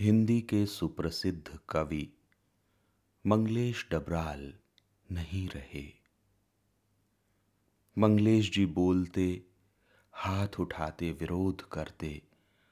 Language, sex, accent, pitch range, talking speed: Hindi, male, native, 80-105 Hz, 70 wpm